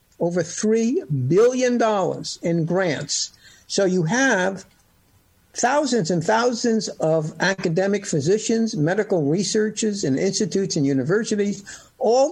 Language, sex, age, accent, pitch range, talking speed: English, male, 60-79, American, 160-210 Hz, 100 wpm